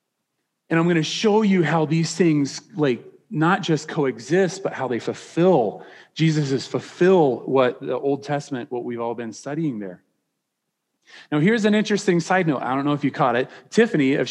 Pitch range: 130-180 Hz